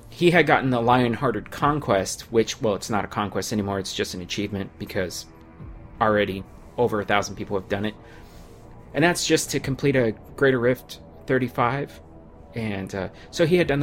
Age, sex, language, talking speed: 30-49, male, English, 180 wpm